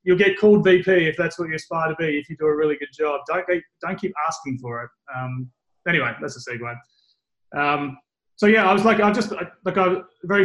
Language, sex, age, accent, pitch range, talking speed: English, male, 30-49, Australian, 145-165 Hz, 235 wpm